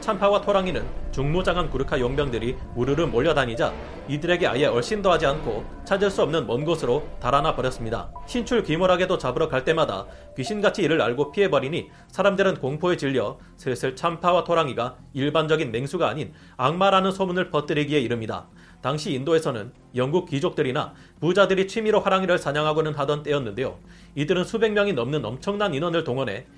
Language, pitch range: Korean, 135-185 Hz